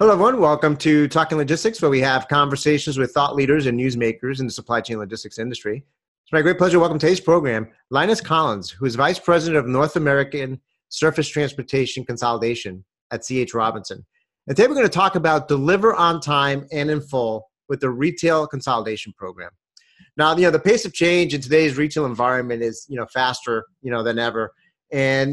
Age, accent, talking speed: 30-49, American, 195 wpm